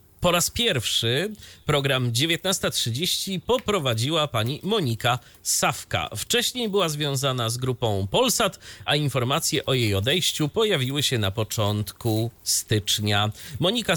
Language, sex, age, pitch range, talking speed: Polish, male, 30-49, 110-145 Hz, 110 wpm